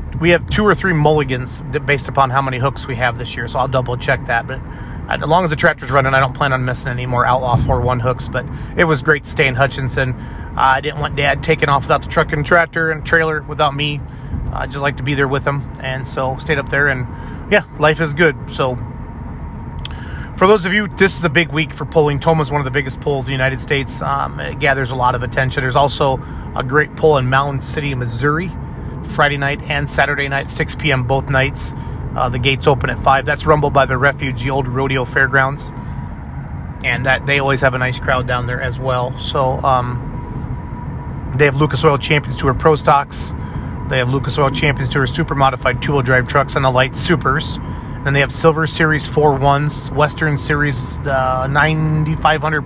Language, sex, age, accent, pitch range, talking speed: English, male, 30-49, American, 130-150 Hz, 215 wpm